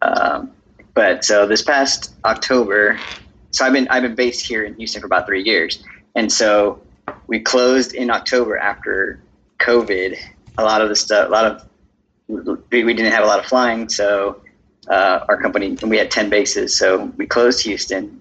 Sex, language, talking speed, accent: male, English, 180 wpm, American